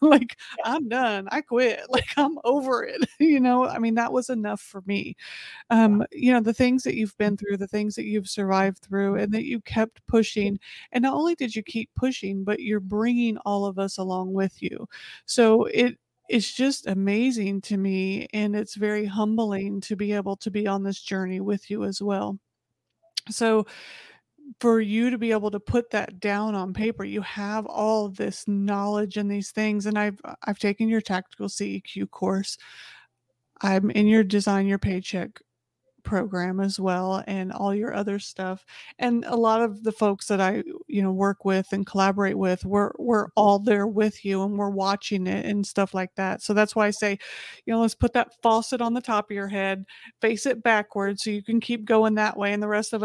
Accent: American